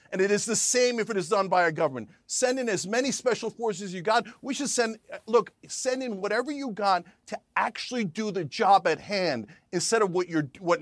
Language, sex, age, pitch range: English, male, 40-59, 180-265 Hz